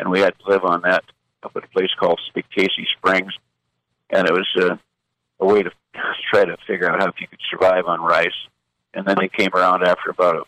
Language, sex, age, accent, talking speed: English, male, 50-69, American, 225 wpm